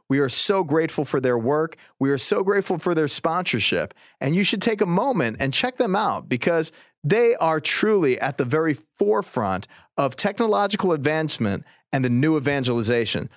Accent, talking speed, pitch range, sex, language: American, 175 wpm, 135-200 Hz, male, English